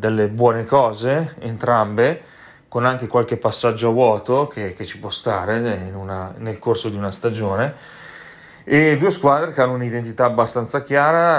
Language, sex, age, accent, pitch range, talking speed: Italian, male, 30-49, native, 105-125 Hz, 160 wpm